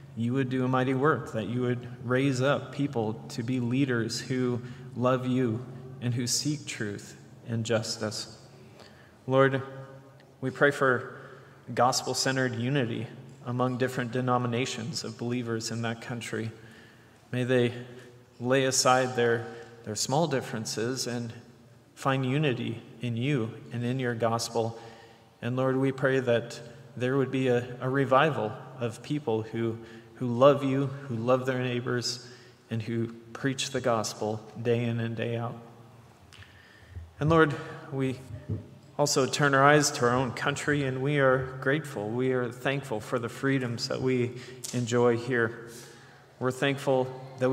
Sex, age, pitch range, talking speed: male, 30-49, 115-135 Hz, 145 wpm